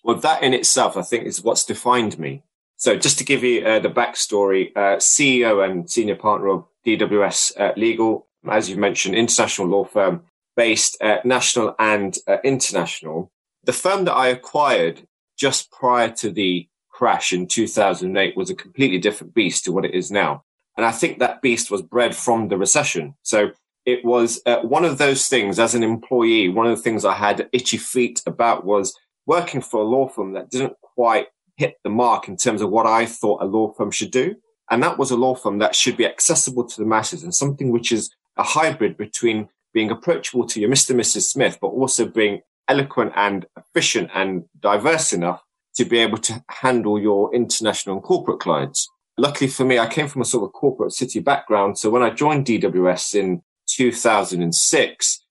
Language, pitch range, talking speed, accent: English, 105-130 Hz, 195 wpm, British